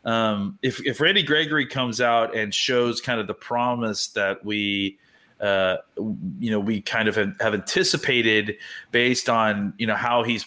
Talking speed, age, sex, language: 170 wpm, 30-49, male, English